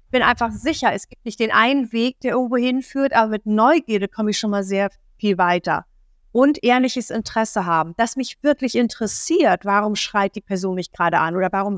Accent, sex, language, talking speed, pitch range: German, female, German, 205 wpm, 195-260 Hz